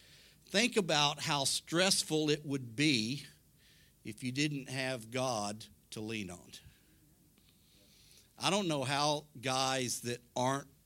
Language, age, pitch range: English, 50-69, 135-175 Hz